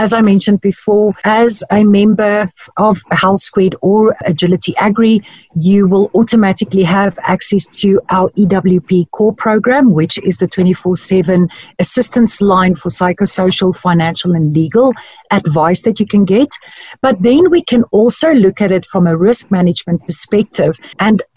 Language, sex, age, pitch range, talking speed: English, female, 40-59, 185-225 Hz, 145 wpm